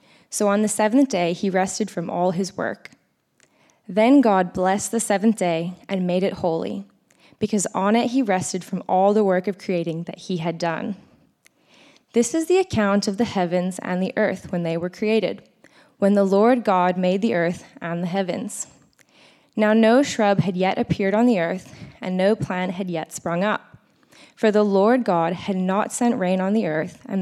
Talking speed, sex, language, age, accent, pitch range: 195 wpm, female, English, 20-39, American, 180-225 Hz